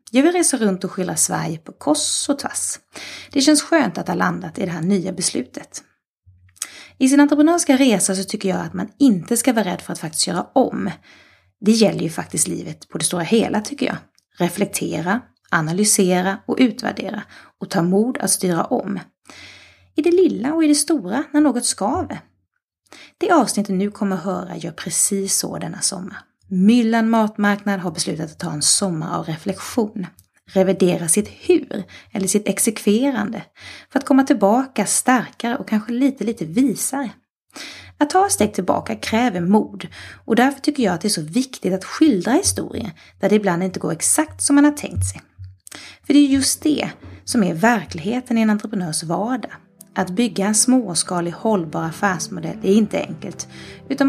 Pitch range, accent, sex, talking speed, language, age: 185-265 Hz, Swedish, female, 175 wpm, English, 30-49